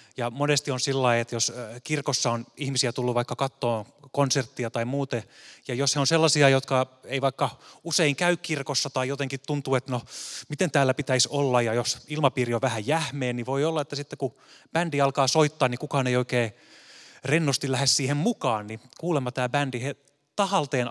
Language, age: Finnish, 20-39